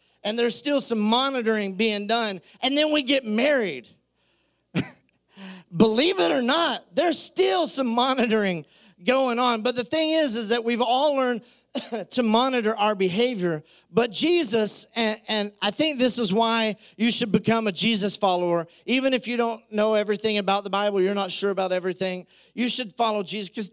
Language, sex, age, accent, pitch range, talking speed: English, male, 40-59, American, 195-250 Hz, 175 wpm